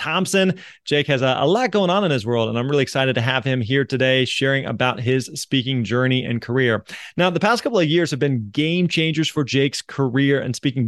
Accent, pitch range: American, 130-165 Hz